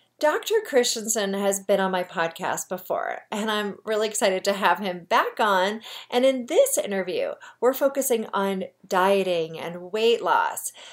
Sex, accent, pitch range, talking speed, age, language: female, American, 195-295 Hz, 155 wpm, 40-59, English